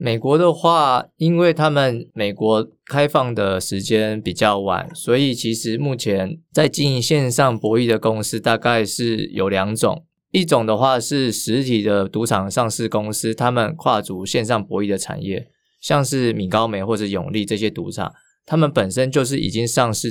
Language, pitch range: Chinese, 105-135 Hz